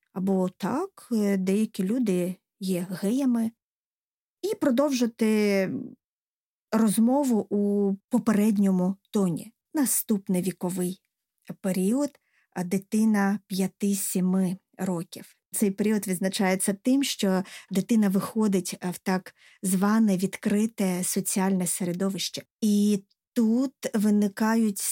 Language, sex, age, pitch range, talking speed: Ukrainian, female, 20-39, 190-235 Hz, 85 wpm